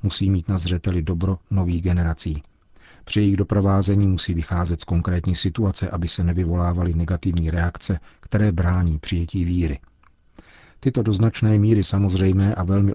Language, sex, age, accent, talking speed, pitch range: Czech, male, 40-59, native, 140 wpm, 85-100 Hz